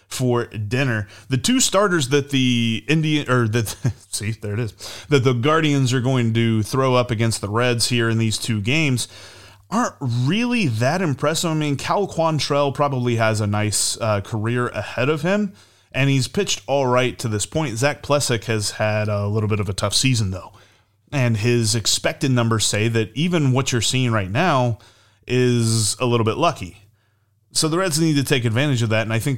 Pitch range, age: 110-145 Hz, 30-49